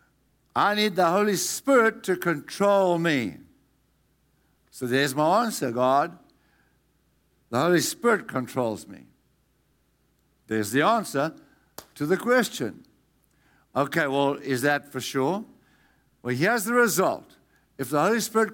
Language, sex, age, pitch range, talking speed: English, male, 60-79, 130-175 Hz, 125 wpm